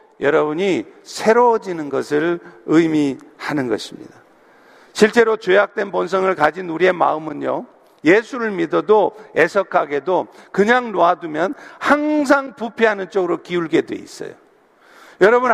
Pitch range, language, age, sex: 195-265 Hz, Korean, 50-69, male